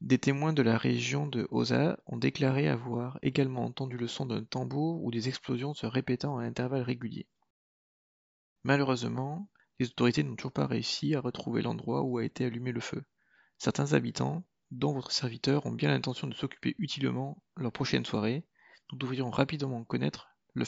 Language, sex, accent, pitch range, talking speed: French, male, French, 115-135 Hz, 170 wpm